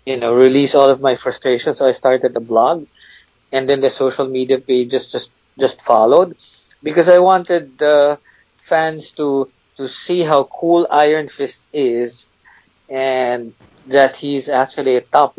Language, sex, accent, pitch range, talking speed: English, male, Filipino, 125-145 Hz, 165 wpm